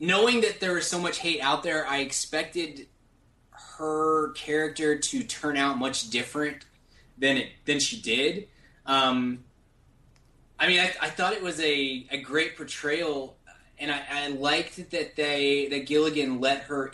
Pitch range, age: 130-155 Hz, 20-39